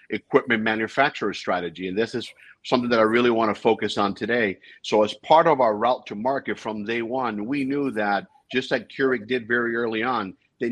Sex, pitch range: male, 105-135 Hz